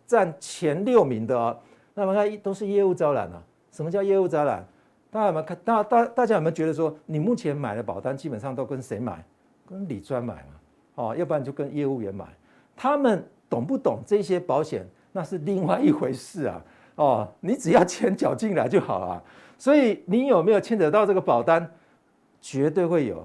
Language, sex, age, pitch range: Chinese, male, 60-79, 135-205 Hz